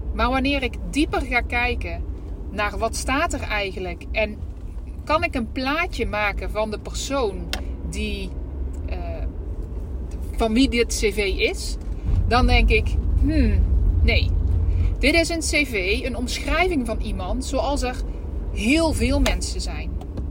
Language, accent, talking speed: Dutch, Dutch, 135 wpm